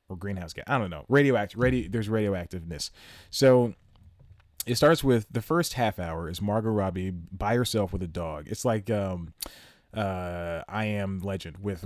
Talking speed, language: 160 wpm, English